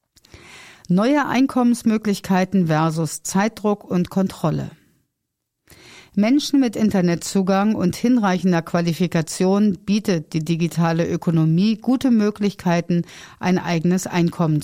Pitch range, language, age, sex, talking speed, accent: 170-220 Hz, German, 50-69, female, 85 wpm, German